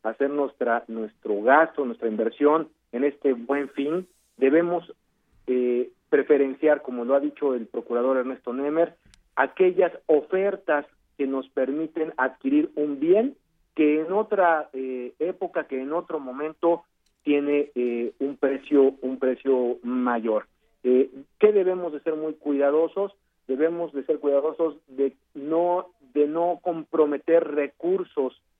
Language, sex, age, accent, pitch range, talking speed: Spanish, male, 50-69, Mexican, 130-165 Hz, 130 wpm